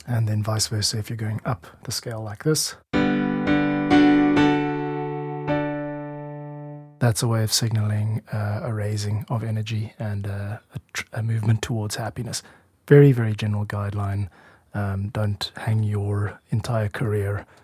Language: English